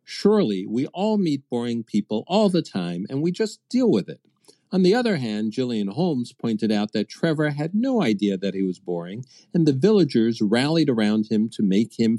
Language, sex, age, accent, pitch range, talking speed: English, male, 50-69, American, 105-165 Hz, 200 wpm